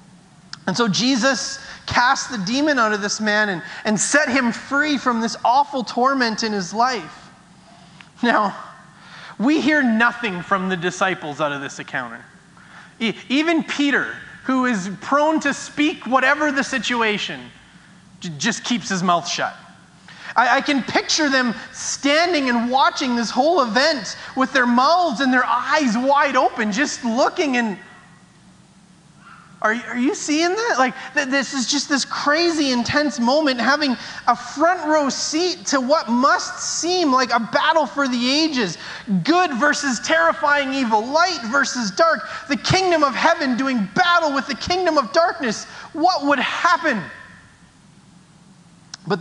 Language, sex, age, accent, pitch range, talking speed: English, male, 30-49, American, 200-290 Hz, 145 wpm